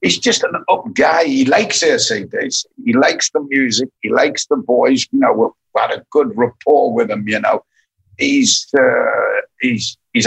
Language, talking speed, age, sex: English, 180 wpm, 60-79, male